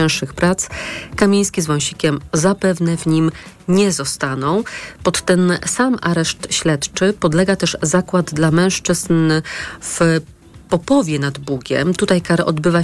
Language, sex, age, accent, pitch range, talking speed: Polish, female, 40-59, native, 150-185 Hz, 120 wpm